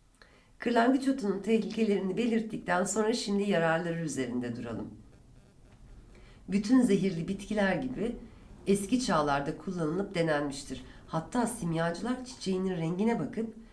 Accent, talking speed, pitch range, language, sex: native, 95 wpm, 140-210 Hz, Turkish, female